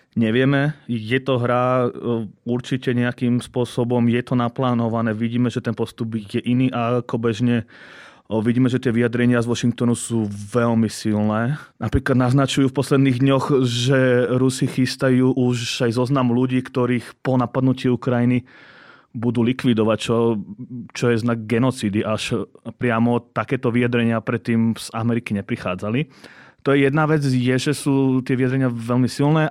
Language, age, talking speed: Slovak, 30-49, 140 wpm